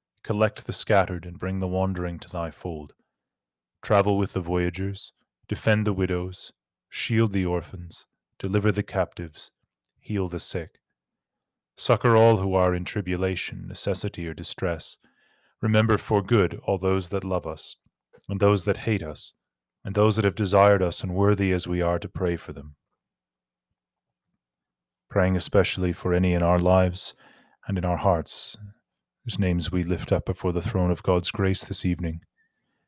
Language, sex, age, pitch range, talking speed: English, male, 30-49, 85-100 Hz, 160 wpm